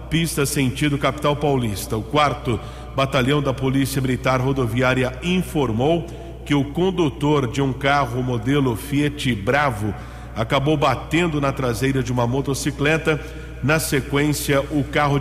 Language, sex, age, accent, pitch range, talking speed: English, male, 50-69, Brazilian, 125-150 Hz, 125 wpm